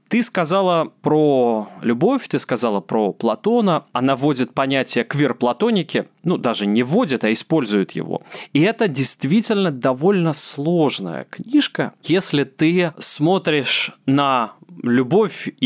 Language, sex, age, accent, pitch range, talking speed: Russian, male, 20-39, native, 135-195 Hz, 115 wpm